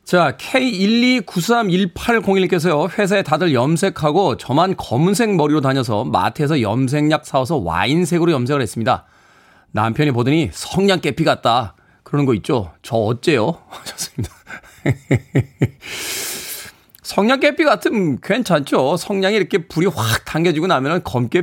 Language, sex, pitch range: Korean, male, 130-185 Hz